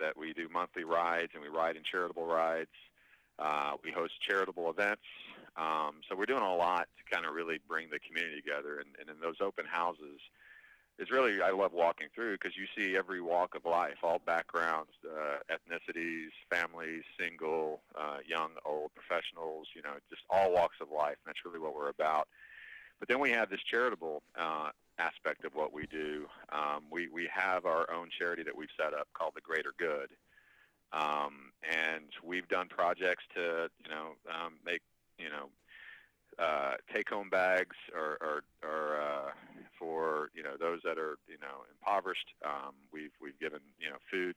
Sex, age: male, 40-59